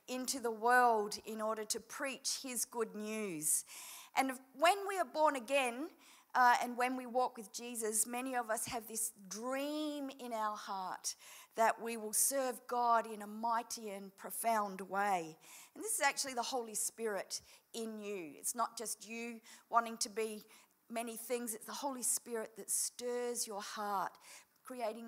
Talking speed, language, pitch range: 170 wpm, English, 220-265 Hz